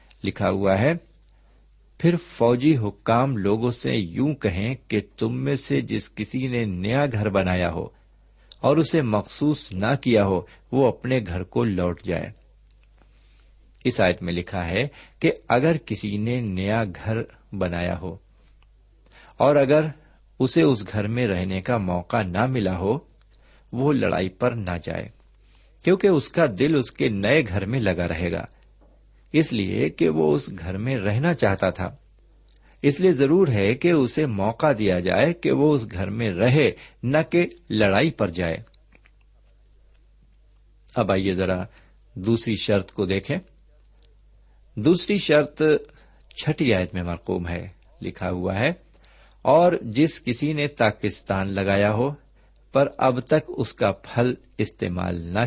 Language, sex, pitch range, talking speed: Urdu, male, 95-135 Hz, 150 wpm